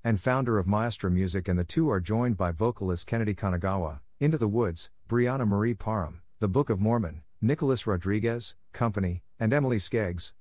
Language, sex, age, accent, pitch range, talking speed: English, male, 50-69, American, 90-115 Hz, 175 wpm